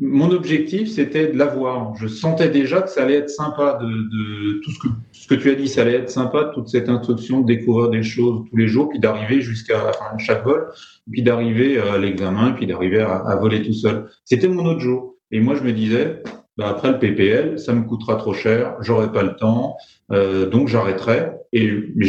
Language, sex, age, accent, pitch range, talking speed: French, male, 30-49, French, 105-125 Hz, 220 wpm